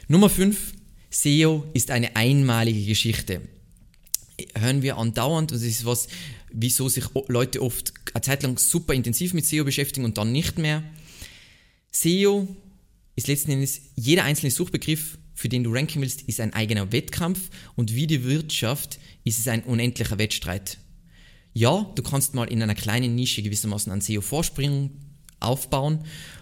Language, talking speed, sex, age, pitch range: German, 150 wpm, male, 20-39, 110-140 Hz